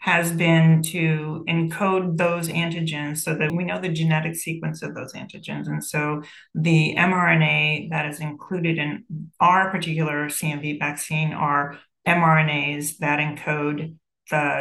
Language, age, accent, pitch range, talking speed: English, 40-59, American, 150-175 Hz, 135 wpm